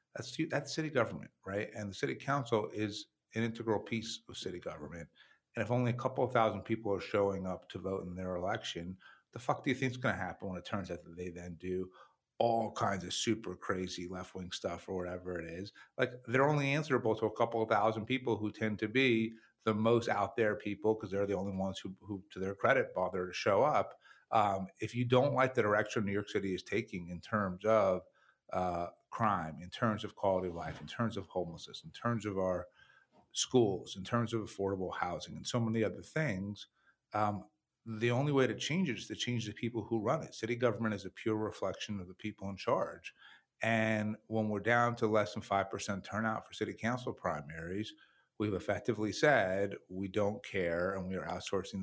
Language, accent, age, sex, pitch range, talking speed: English, American, 50-69, male, 95-115 Hz, 215 wpm